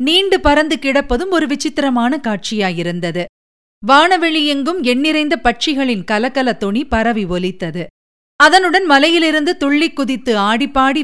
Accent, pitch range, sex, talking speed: native, 215-285 Hz, female, 105 wpm